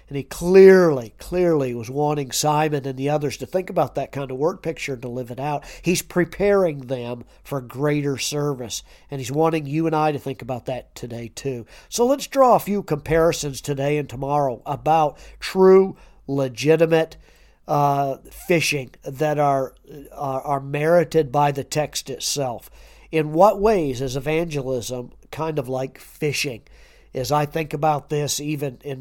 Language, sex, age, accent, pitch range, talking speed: English, male, 50-69, American, 135-165 Hz, 165 wpm